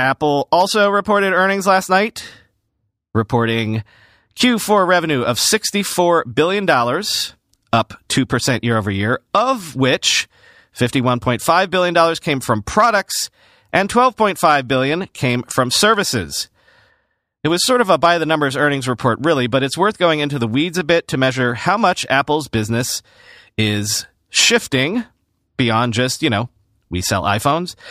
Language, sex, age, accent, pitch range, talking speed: English, male, 40-59, American, 120-190 Hz, 135 wpm